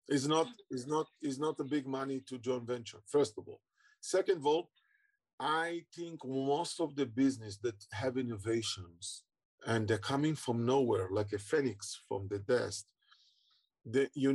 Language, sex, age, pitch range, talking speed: English, male, 40-59, 115-155 Hz, 165 wpm